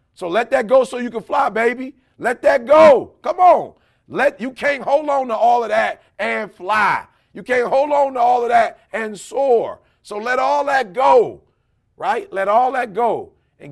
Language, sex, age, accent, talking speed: English, male, 40-59, American, 200 wpm